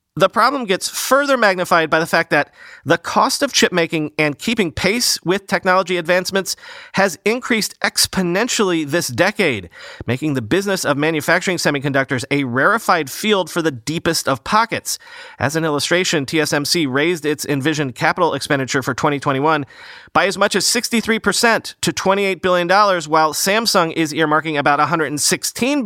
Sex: male